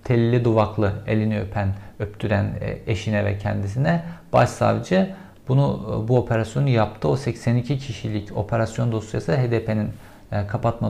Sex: male